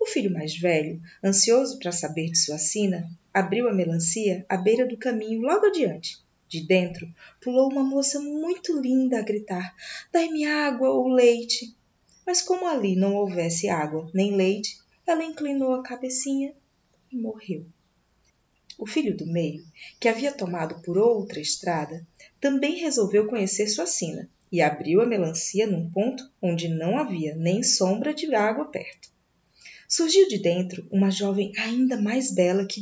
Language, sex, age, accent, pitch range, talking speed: Portuguese, female, 20-39, Brazilian, 175-255 Hz, 155 wpm